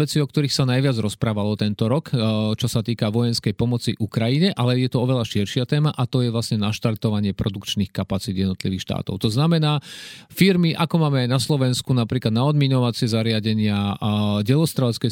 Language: Slovak